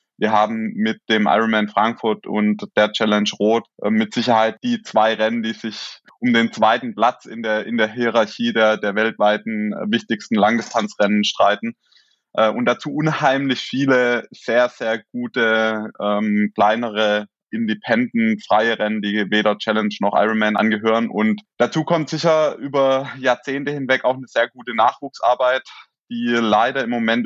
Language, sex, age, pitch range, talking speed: German, male, 20-39, 105-125 Hz, 145 wpm